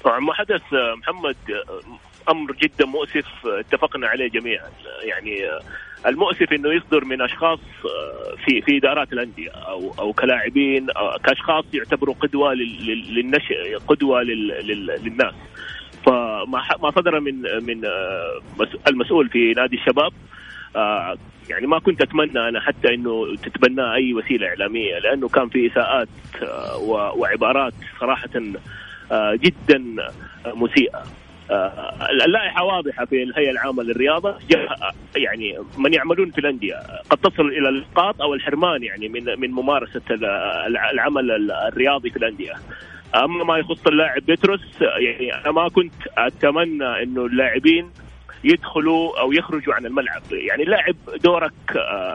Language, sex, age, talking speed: Arabic, male, 30-49, 110 wpm